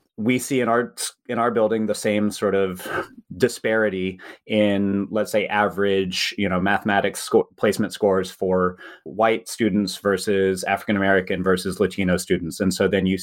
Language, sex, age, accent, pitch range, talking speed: English, male, 30-49, American, 95-110 Hz, 145 wpm